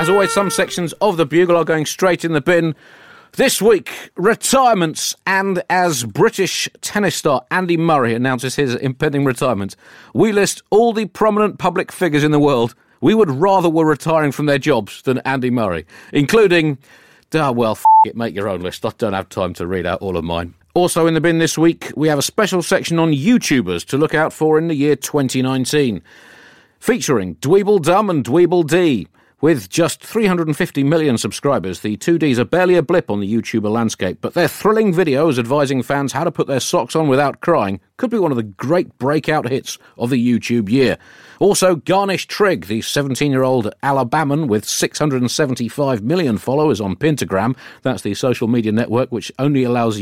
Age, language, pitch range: 40-59, English, 120-175 Hz